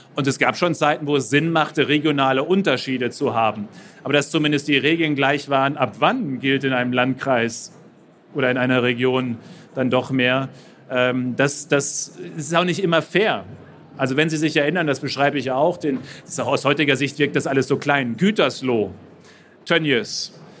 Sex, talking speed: male, 180 wpm